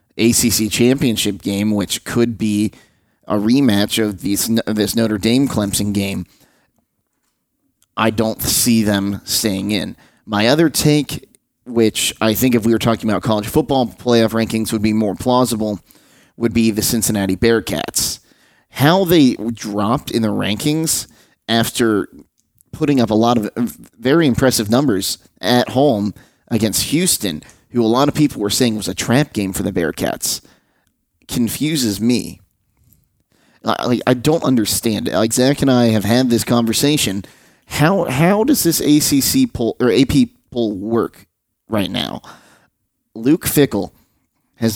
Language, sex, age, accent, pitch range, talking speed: English, male, 30-49, American, 105-125 Hz, 140 wpm